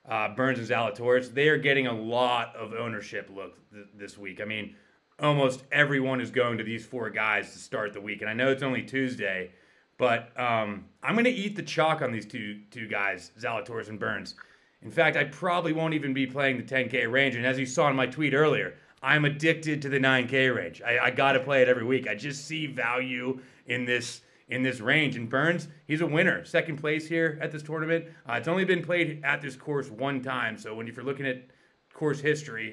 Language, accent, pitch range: English, American, 120-155 Hz